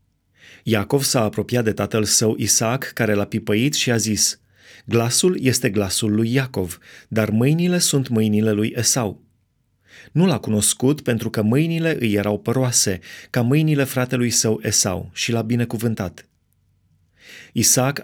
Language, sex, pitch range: Romanian, male, 105-130 Hz